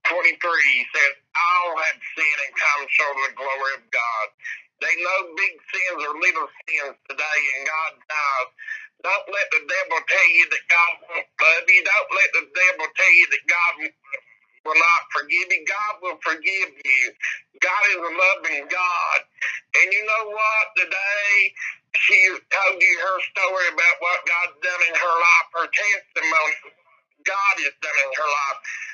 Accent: American